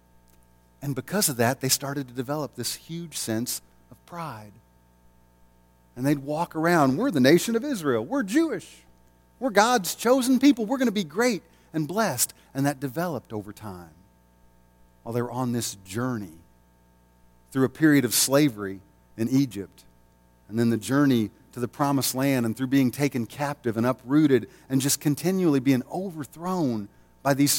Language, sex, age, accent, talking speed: English, male, 40-59, American, 165 wpm